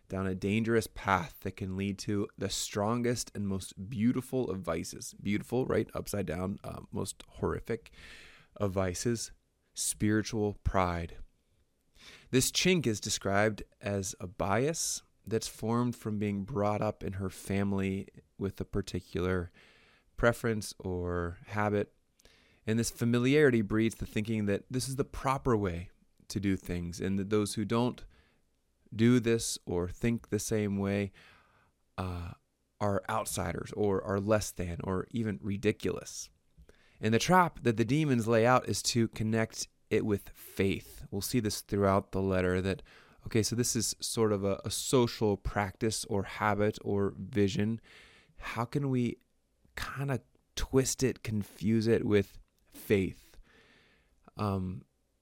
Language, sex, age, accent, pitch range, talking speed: English, male, 20-39, American, 95-115 Hz, 145 wpm